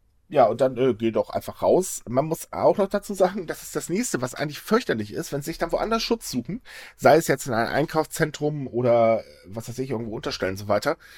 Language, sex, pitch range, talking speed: German, male, 115-160 Hz, 235 wpm